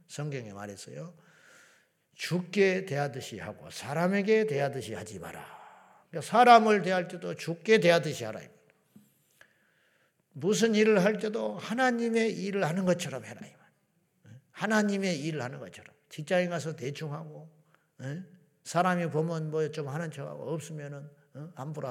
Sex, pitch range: male, 130-180 Hz